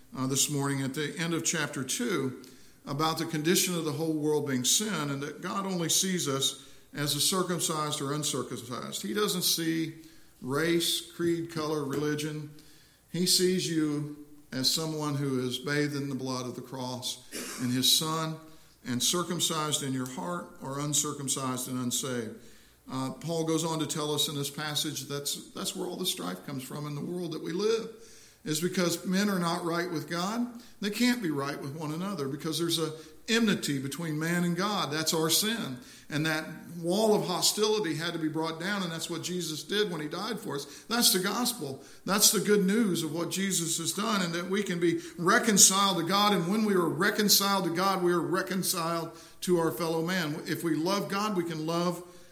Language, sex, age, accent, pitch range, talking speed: English, male, 50-69, American, 140-180 Hz, 200 wpm